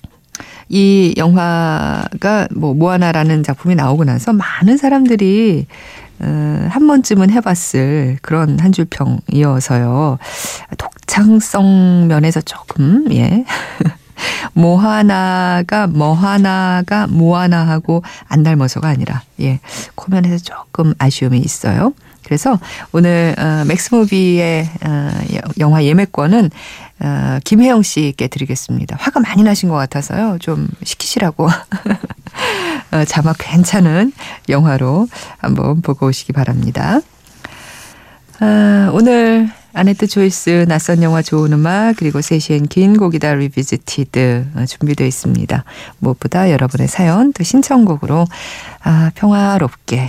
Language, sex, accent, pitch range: Korean, female, native, 145-200 Hz